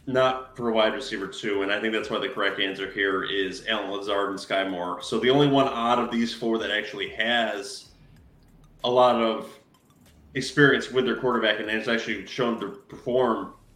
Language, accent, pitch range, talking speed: English, American, 110-125 Hz, 195 wpm